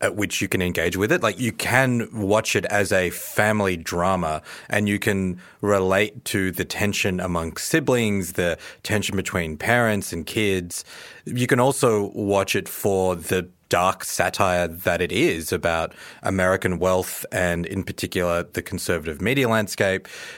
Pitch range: 90-110 Hz